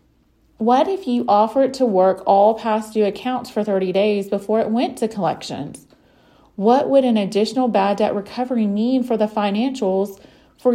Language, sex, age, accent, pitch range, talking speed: English, female, 30-49, American, 210-260 Hz, 165 wpm